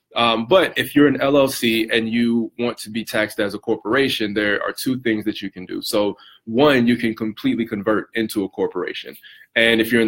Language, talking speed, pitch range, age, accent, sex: English, 215 wpm, 105-115 Hz, 20-39, American, male